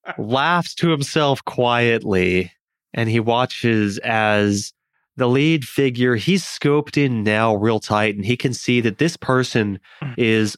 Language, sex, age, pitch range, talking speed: English, male, 20-39, 110-140 Hz, 140 wpm